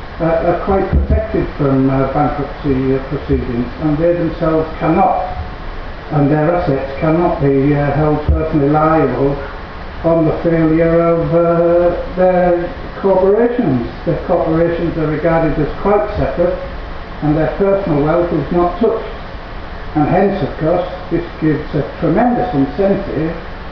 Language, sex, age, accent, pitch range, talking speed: Italian, male, 60-79, British, 140-175 Hz, 130 wpm